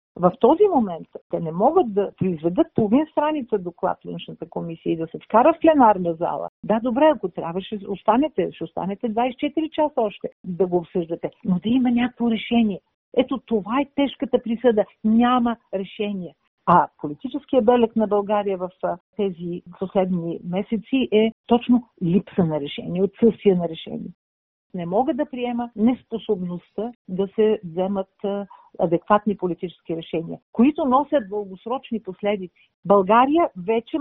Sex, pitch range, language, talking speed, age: female, 185-240 Hz, Bulgarian, 145 wpm, 50-69